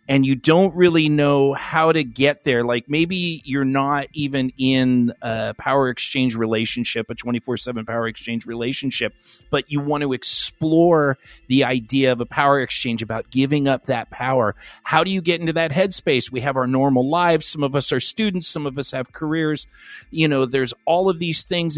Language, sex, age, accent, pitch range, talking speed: English, male, 40-59, American, 125-160 Hz, 190 wpm